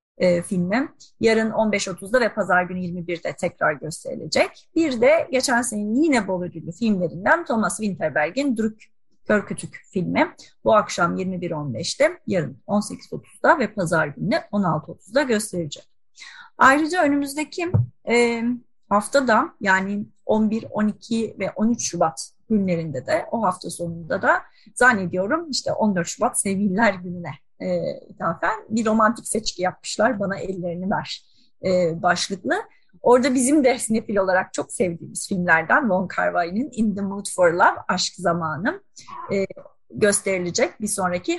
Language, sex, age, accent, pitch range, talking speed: Turkish, female, 30-49, native, 180-230 Hz, 120 wpm